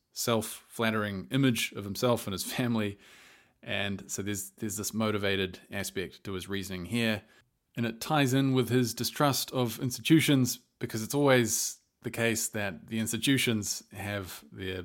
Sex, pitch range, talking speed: male, 100-120 Hz, 150 wpm